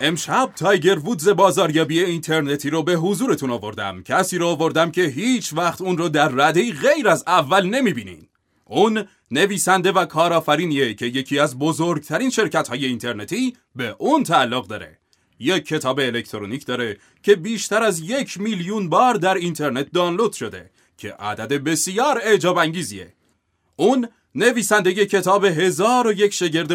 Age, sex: 30-49, male